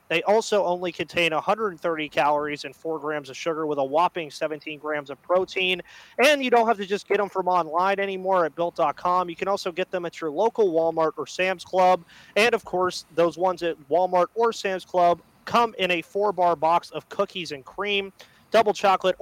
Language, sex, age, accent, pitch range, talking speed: English, male, 30-49, American, 155-195 Hz, 200 wpm